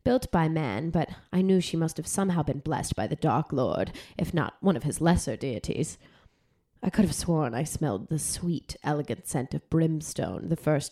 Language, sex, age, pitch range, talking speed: English, female, 20-39, 155-190 Hz, 205 wpm